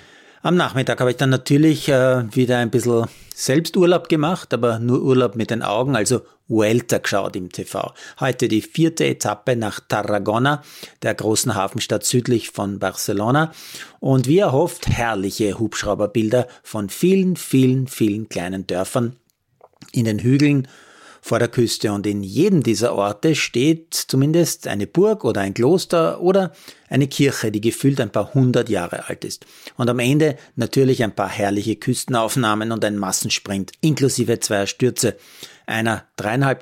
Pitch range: 105-140 Hz